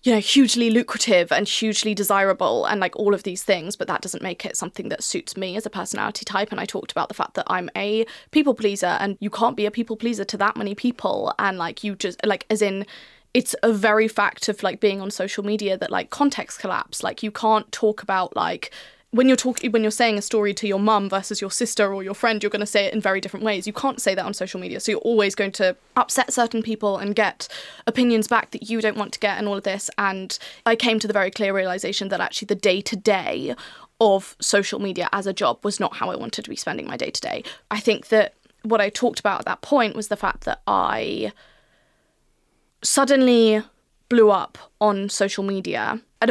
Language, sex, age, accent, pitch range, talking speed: English, female, 20-39, British, 195-230 Hz, 235 wpm